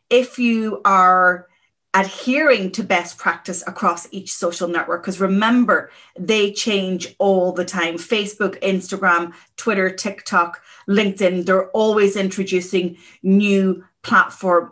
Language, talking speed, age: English, 115 wpm, 30-49